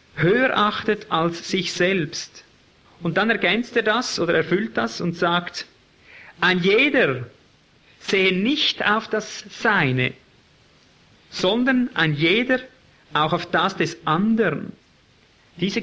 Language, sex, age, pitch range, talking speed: German, male, 50-69, 165-200 Hz, 120 wpm